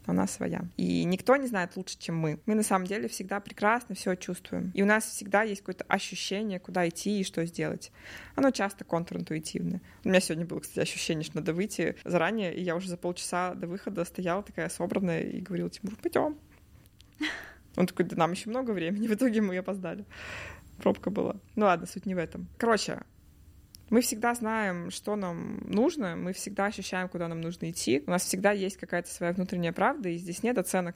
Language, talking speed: Russian, 195 wpm